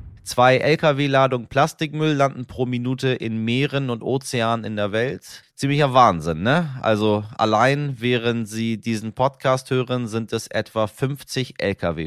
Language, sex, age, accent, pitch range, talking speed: German, male, 30-49, German, 95-120 Hz, 140 wpm